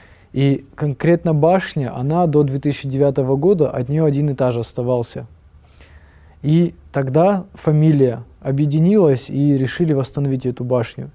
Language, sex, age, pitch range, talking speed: Russian, male, 20-39, 130-150 Hz, 125 wpm